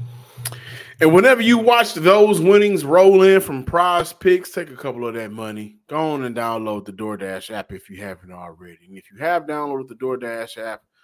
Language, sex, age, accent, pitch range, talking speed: English, male, 30-49, American, 115-160 Hz, 195 wpm